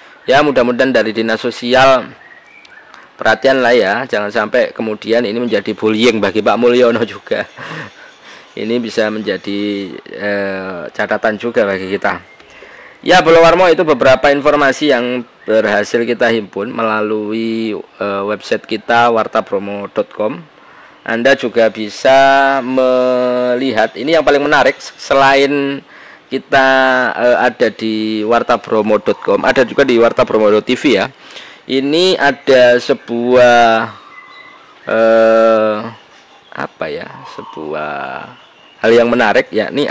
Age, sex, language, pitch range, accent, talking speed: 20-39, male, Indonesian, 110-135 Hz, native, 105 wpm